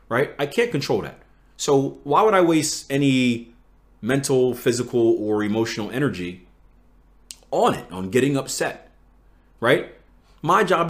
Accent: American